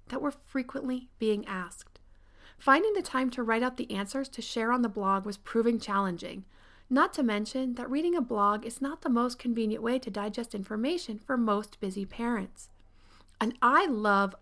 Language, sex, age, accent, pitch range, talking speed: English, female, 40-59, American, 205-270 Hz, 185 wpm